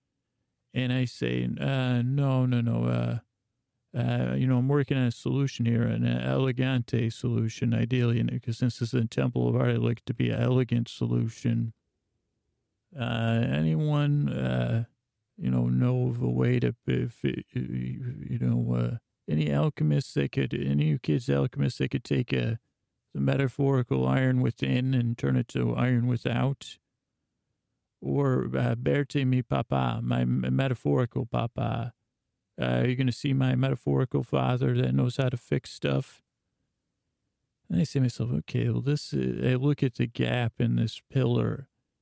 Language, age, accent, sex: English, 40-59, American, male